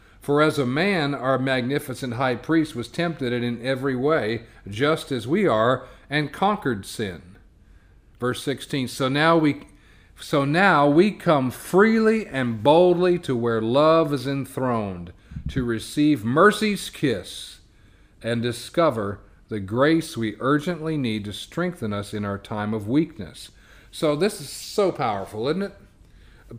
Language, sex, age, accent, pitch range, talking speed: English, male, 40-59, American, 120-155 Hz, 145 wpm